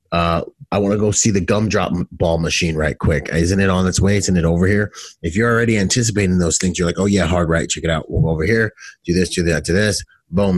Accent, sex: American, male